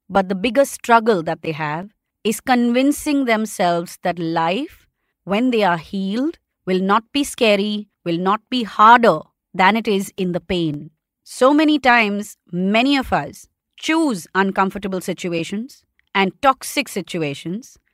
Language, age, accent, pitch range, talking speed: English, 30-49, Indian, 185-240 Hz, 140 wpm